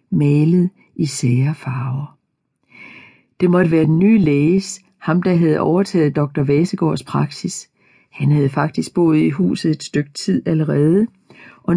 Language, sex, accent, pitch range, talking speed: Danish, female, native, 145-190 Hz, 145 wpm